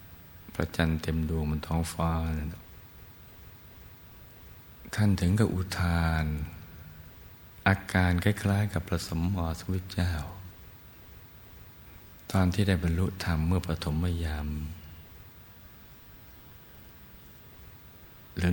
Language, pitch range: Thai, 80-95 Hz